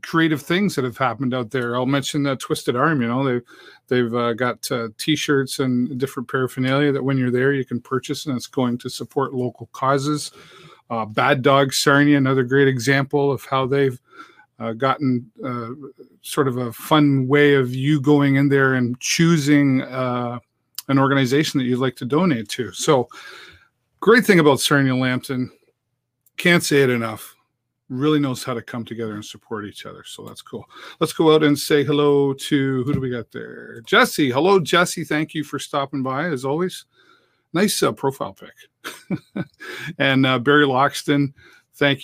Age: 40-59